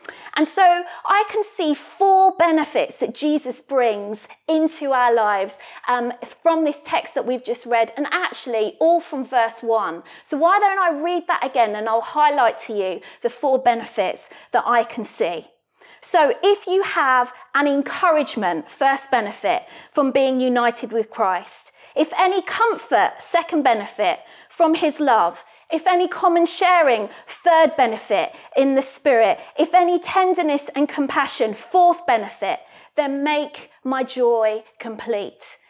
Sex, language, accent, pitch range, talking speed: female, English, British, 240-340 Hz, 150 wpm